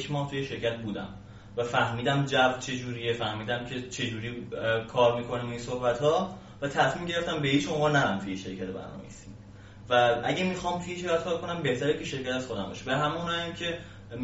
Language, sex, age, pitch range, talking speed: Persian, male, 20-39, 115-145 Hz, 160 wpm